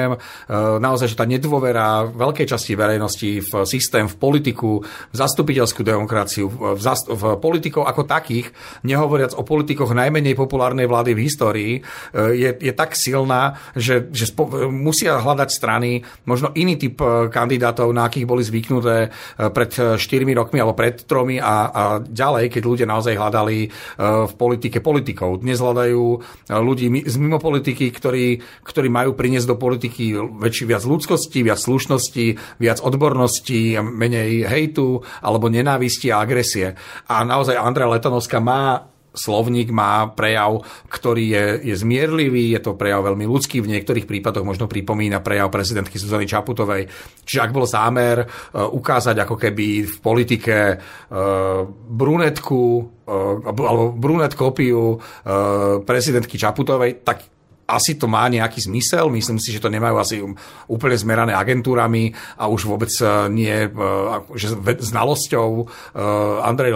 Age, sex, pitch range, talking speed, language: 40-59, male, 110-130 Hz, 130 wpm, Slovak